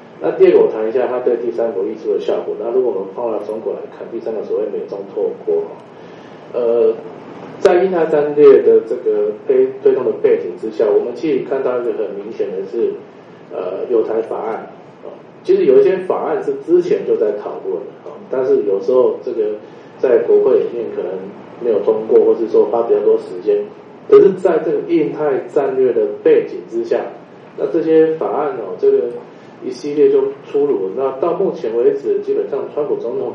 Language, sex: Chinese, male